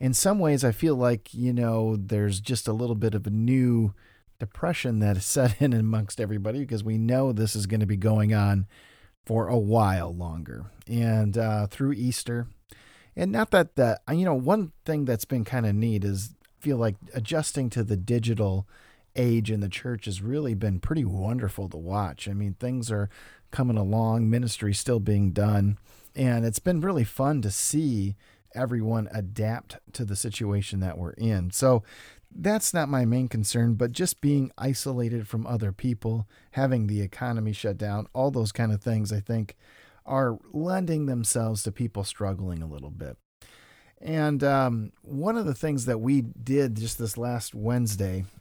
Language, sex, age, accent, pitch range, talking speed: English, male, 40-59, American, 105-125 Hz, 175 wpm